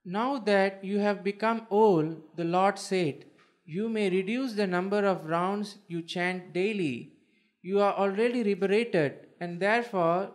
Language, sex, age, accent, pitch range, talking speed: English, male, 20-39, Indian, 180-220 Hz, 145 wpm